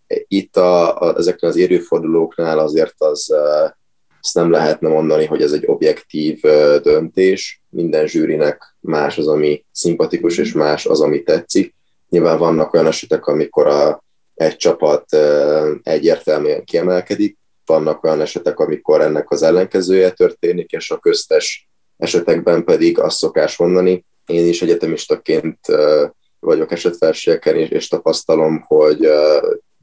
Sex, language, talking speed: male, Hungarian, 130 wpm